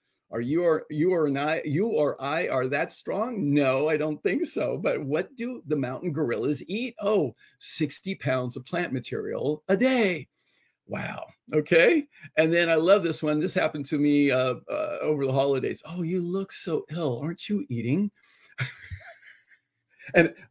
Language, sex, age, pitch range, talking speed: English, male, 40-59, 140-190 Hz, 160 wpm